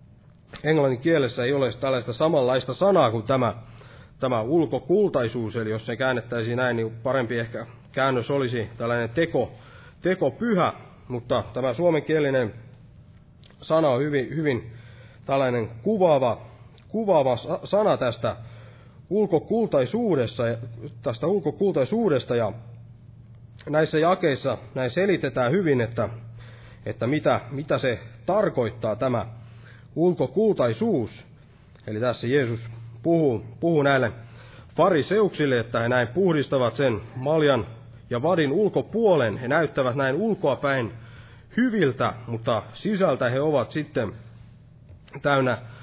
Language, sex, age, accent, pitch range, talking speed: Finnish, male, 30-49, native, 115-145 Hz, 100 wpm